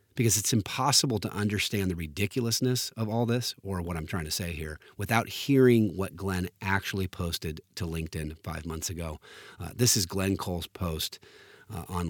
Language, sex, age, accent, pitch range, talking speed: English, male, 30-49, American, 85-110 Hz, 180 wpm